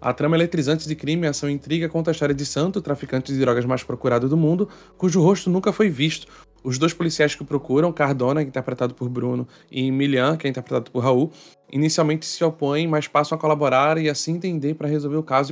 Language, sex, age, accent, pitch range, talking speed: Portuguese, male, 20-39, Brazilian, 130-155 Hz, 220 wpm